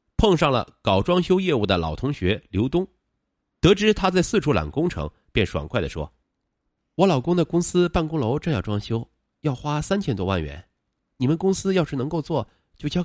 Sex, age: male, 30-49